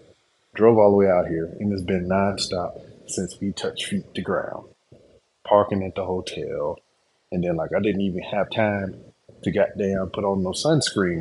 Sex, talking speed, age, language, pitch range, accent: male, 185 wpm, 30-49, English, 95-115 Hz, American